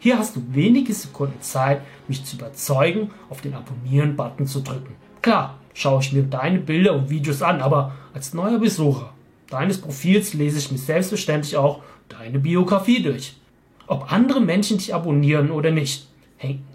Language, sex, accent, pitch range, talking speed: German, male, German, 135-170 Hz, 160 wpm